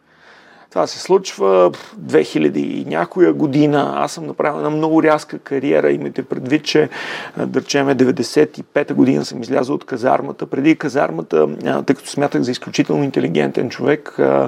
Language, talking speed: Bulgarian, 135 wpm